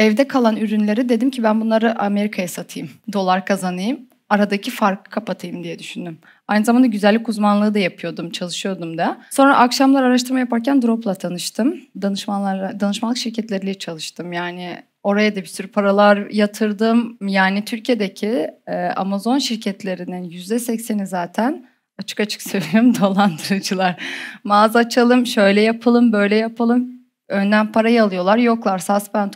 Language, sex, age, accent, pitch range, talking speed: Turkish, female, 30-49, native, 190-235 Hz, 130 wpm